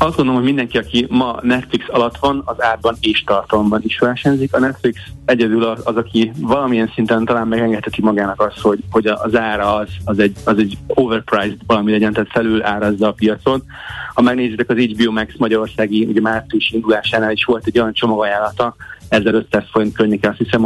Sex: male